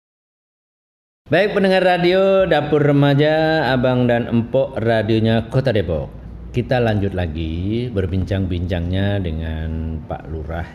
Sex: male